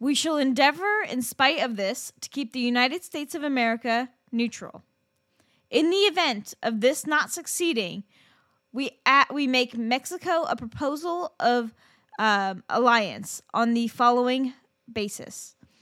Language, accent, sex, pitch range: English, American, female, 225-290 Hz